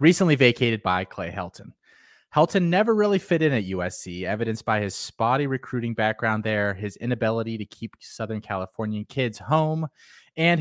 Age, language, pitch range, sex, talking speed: 20-39, English, 100-135 Hz, male, 160 wpm